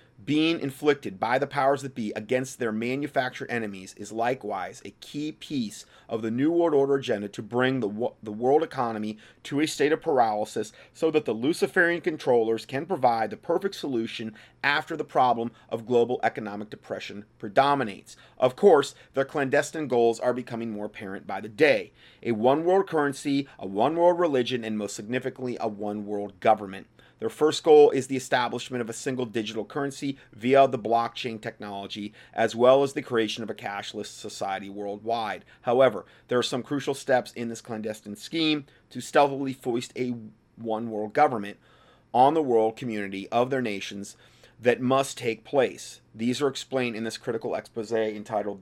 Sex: male